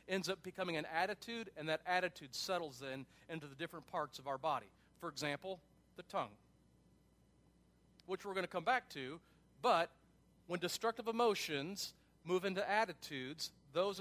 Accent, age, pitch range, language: American, 40-59, 155-195 Hz, English